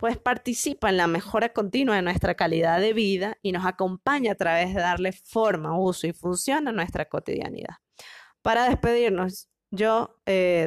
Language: Spanish